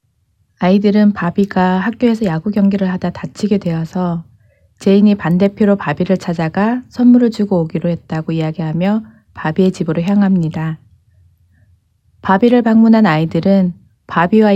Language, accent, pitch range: Korean, native, 160-205 Hz